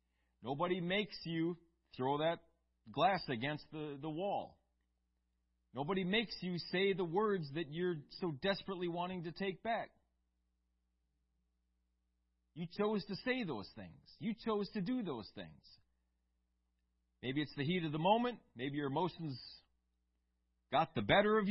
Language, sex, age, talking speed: English, male, 40-59, 140 wpm